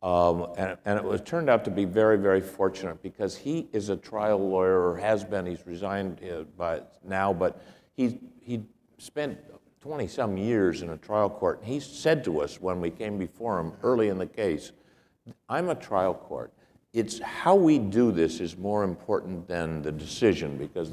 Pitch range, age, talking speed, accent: 85-115 Hz, 60-79, 185 wpm, American